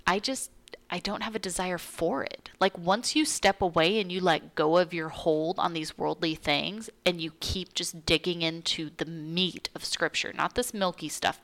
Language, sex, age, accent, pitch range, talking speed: English, female, 30-49, American, 160-210 Hz, 205 wpm